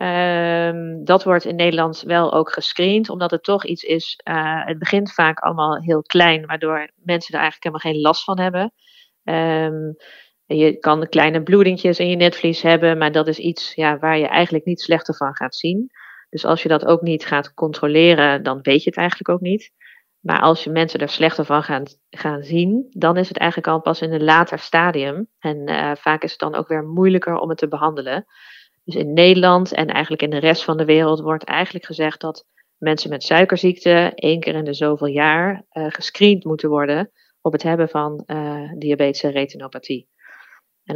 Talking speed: 200 wpm